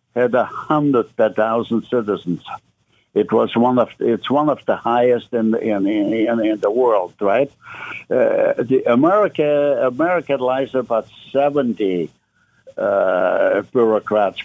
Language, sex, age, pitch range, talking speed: English, male, 60-79, 110-140 Hz, 130 wpm